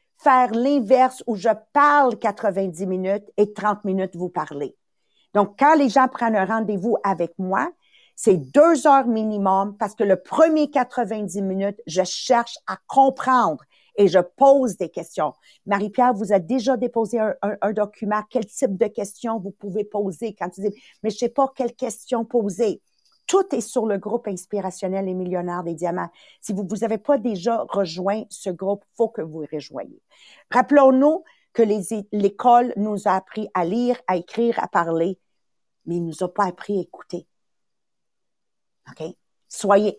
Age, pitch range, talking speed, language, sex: 50-69, 190-245 Hz, 170 wpm, English, female